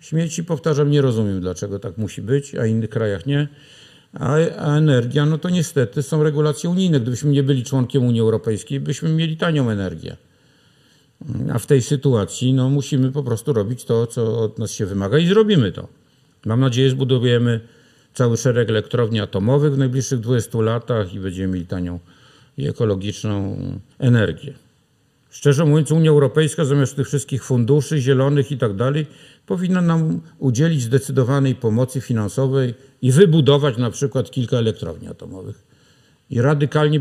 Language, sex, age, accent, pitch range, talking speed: Polish, male, 50-69, native, 110-145 Hz, 155 wpm